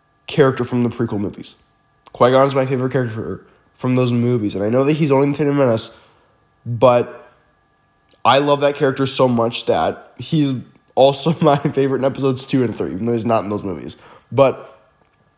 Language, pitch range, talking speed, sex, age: English, 125-145 Hz, 180 wpm, male, 10-29